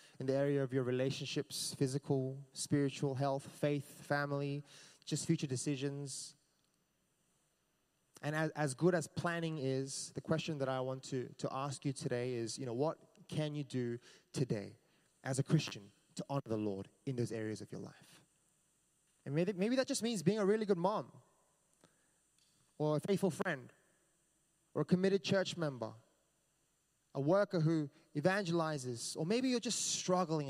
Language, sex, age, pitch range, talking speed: English, male, 20-39, 140-180 Hz, 160 wpm